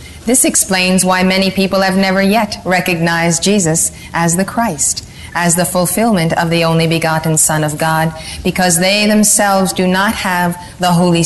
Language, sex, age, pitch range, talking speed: English, female, 30-49, 165-185 Hz, 165 wpm